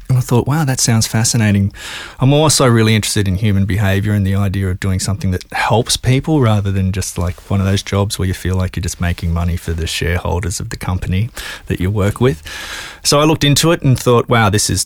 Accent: Australian